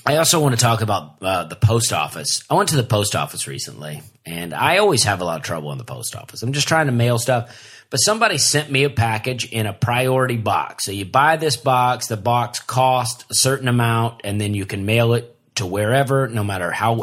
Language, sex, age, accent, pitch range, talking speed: English, male, 30-49, American, 105-135 Hz, 235 wpm